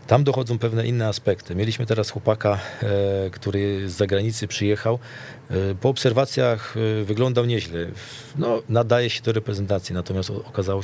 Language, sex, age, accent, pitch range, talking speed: Polish, male, 40-59, native, 100-115 Hz, 125 wpm